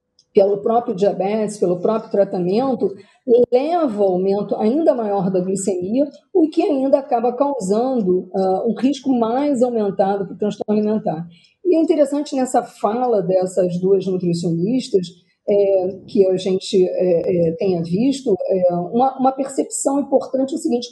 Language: Portuguese